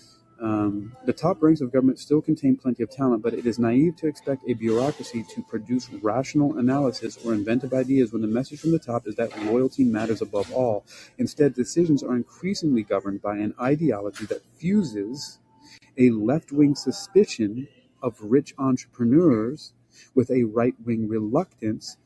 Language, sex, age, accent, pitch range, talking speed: English, male, 40-59, American, 115-145 Hz, 160 wpm